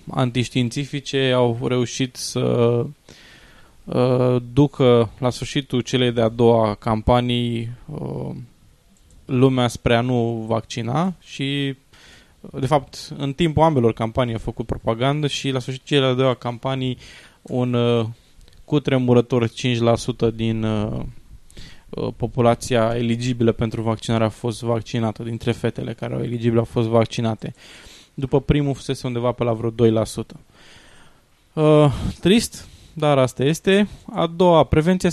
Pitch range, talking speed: 115-140 Hz, 125 wpm